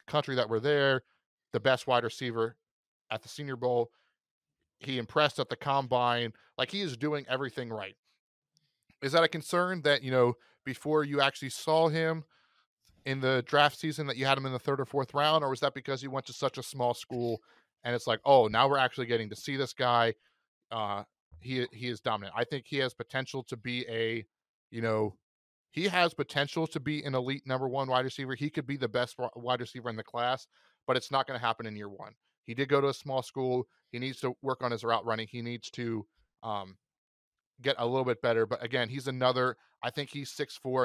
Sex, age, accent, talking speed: male, 30-49, American, 220 wpm